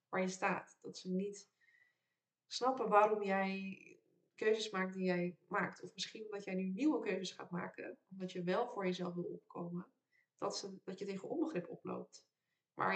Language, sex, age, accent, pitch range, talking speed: Dutch, female, 20-39, Dutch, 180-220 Hz, 170 wpm